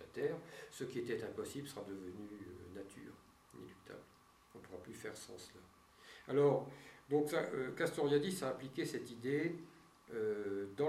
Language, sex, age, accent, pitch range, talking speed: French, male, 50-69, French, 105-140 Hz, 155 wpm